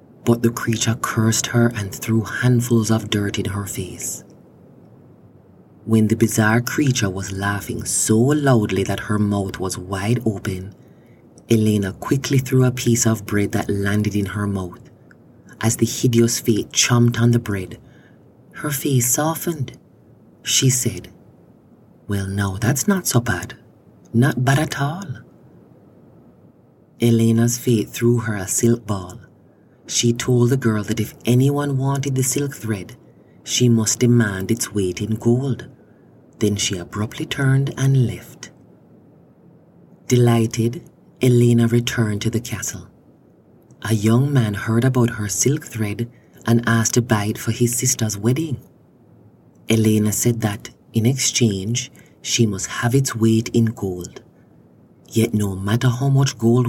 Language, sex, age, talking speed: English, male, 30-49, 140 wpm